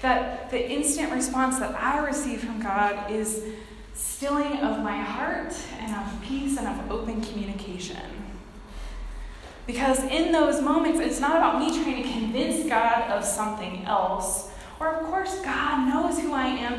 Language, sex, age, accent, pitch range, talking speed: English, female, 20-39, American, 215-280 Hz, 155 wpm